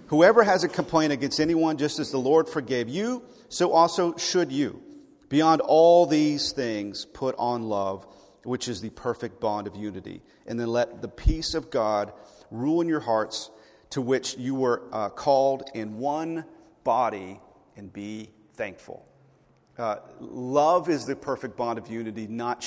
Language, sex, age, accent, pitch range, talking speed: English, male, 40-59, American, 120-160 Hz, 165 wpm